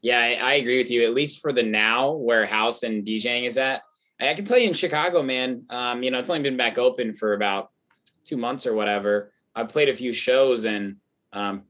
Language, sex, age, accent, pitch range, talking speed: English, male, 20-39, American, 115-145 Hz, 225 wpm